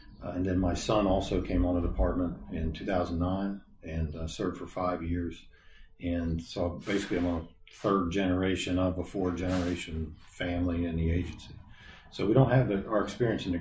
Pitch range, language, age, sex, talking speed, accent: 85-95 Hz, English, 40-59, male, 180 wpm, American